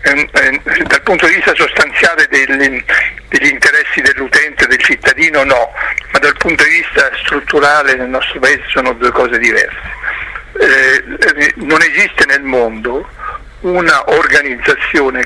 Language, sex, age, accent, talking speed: Italian, male, 60-79, native, 135 wpm